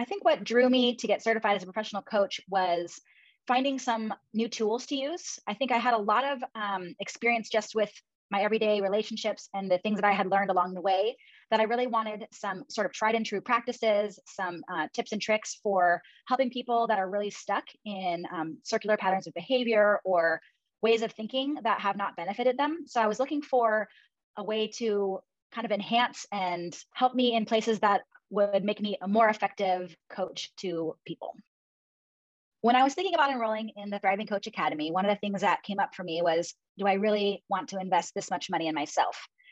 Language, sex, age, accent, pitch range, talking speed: English, female, 20-39, American, 190-225 Hz, 210 wpm